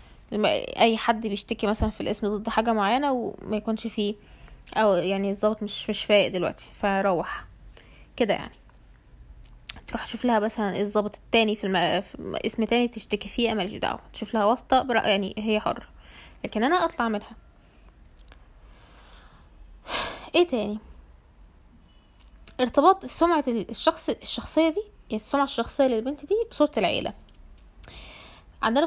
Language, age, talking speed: Arabic, 10-29, 125 wpm